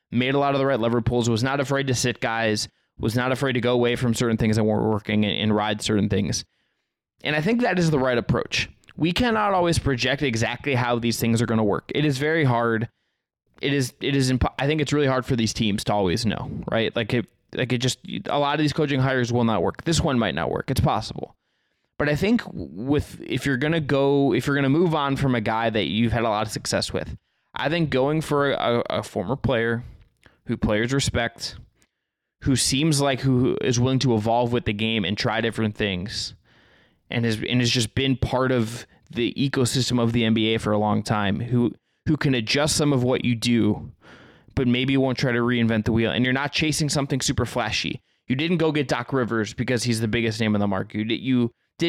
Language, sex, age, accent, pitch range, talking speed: English, male, 20-39, American, 115-140 Hz, 230 wpm